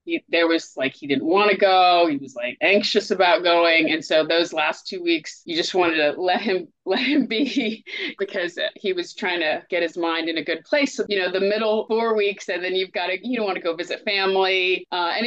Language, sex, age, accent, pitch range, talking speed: English, female, 30-49, American, 165-225 Hz, 250 wpm